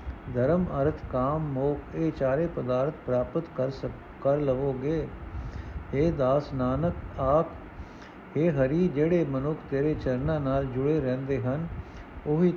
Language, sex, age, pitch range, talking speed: Punjabi, male, 60-79, 135-175 Hz, 130 wpm